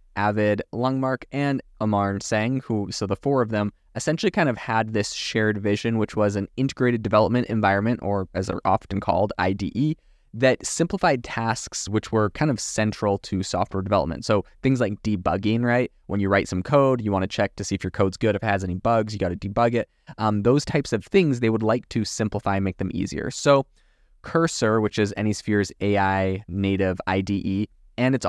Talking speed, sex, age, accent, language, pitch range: 200 wpm, male, 20-39, American, English, 100-120 Hz